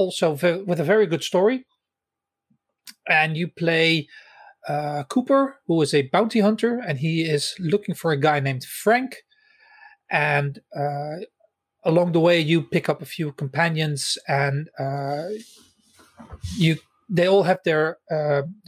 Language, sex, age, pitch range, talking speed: English, male, 40-59, 150-185 Hz, 140 wpm